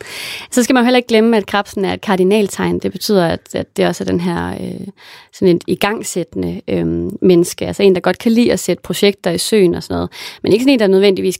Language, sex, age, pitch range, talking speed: English, female, 30-49, 180-225 Hz, 245 wpm